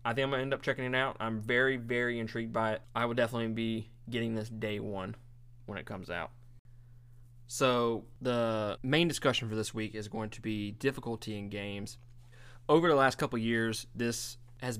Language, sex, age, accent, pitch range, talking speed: English, male, 20-39, American, 110-125 Hz, 200 wpm